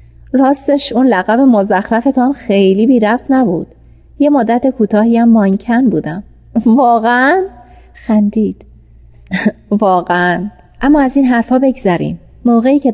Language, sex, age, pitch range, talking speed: Persian, female, 30-49, 175-240 Hz, 105 wpm